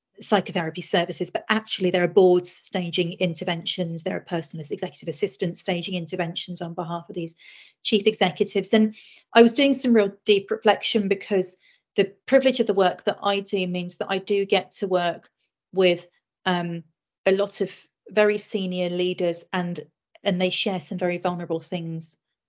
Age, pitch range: 40-59, 170-195 Hz